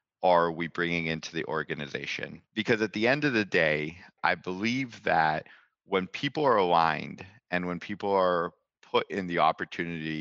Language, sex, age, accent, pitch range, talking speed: English, male, 40-59, American, 80-95 Hz, 165 wpm